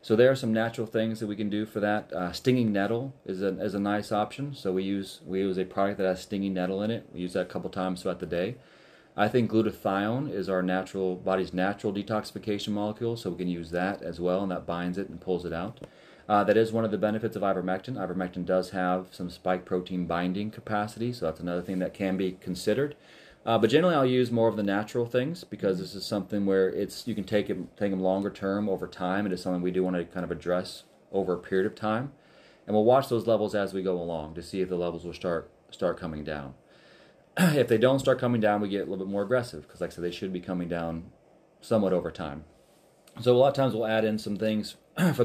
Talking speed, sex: 250 wpm, male